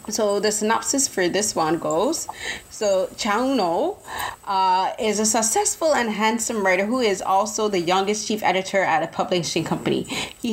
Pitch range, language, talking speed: 185-230 Hz, English, 165 wpm